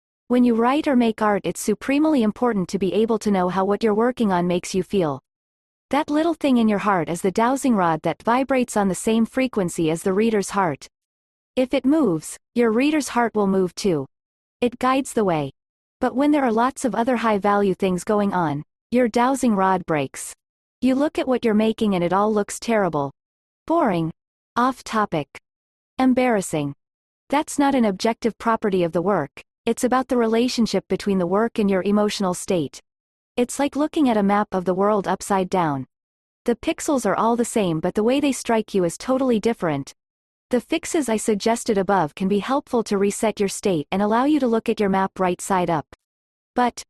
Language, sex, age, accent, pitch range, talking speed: English, female, 40-59, American, 190-245 Hz, 200 wpm